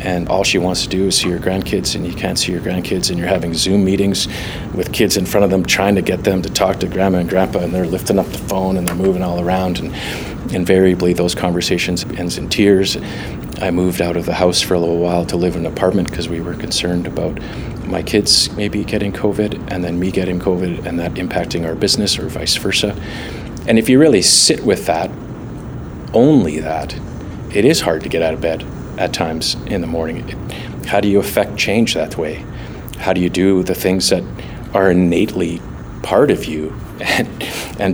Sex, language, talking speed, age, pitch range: male, English, 215 wpm, 40-59, 85-95 Hz